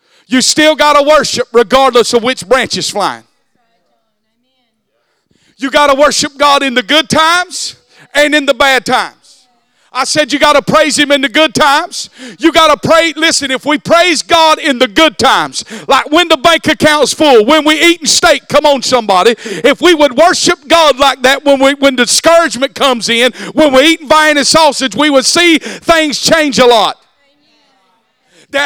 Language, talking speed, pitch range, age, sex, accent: English, 190 wpm, 275-330 Hz, 50-69, male, American